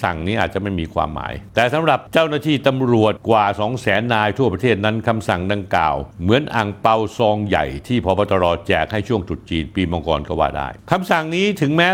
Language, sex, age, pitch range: Thai, male, 60-79, 95-120 Hz